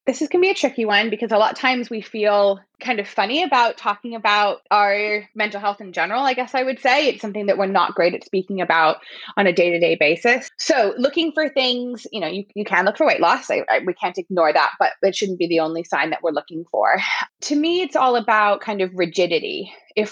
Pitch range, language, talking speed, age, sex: 185-255 Hz, English, 250 wpm, 20-39, female